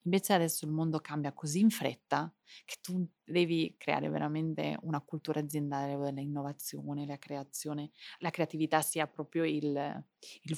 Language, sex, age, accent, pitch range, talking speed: Italian, female, 30-49, native, 150-195 Hz, 145 wpm